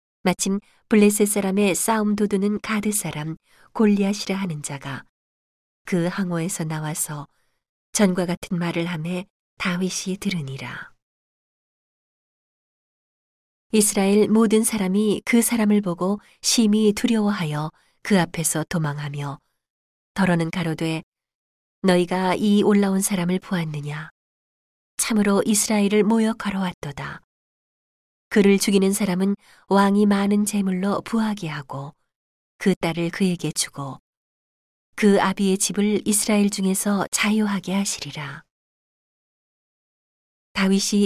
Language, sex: Korean, female